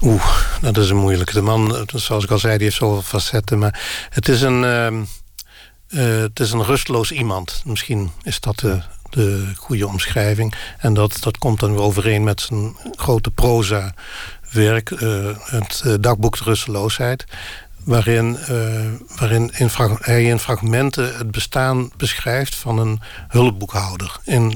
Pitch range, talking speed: 105-125 Hz, 150 wpm